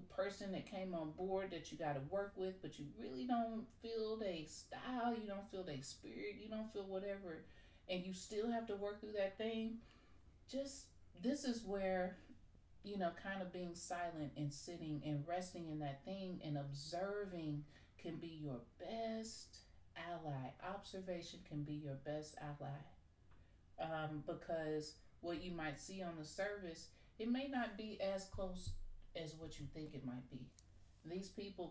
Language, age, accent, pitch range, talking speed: English, 30-49, American, 140-185 Hz, 170 wpm